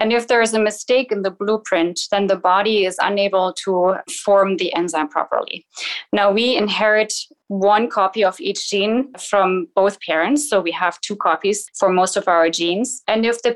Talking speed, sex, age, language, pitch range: 190 wpm, female, 20-39, English, 180-220 Hz